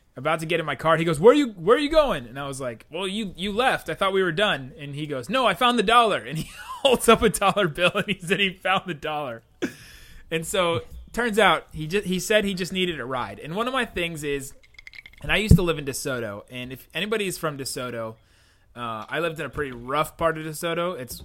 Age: 30-49